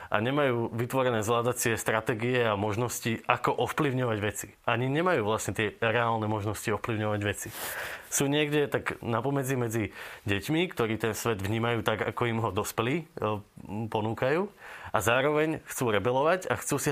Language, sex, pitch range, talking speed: Slovak, male, 110-125 Hz, 145 wpm